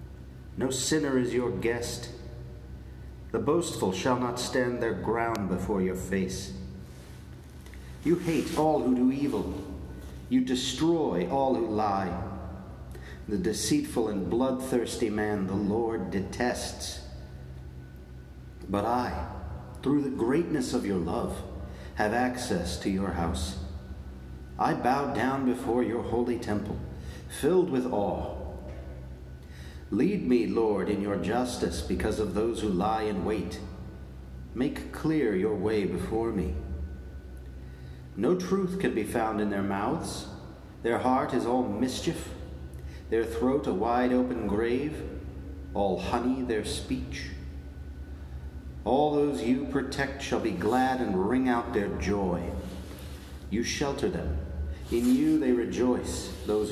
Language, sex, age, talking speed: English, male, 40-59, 125 wpm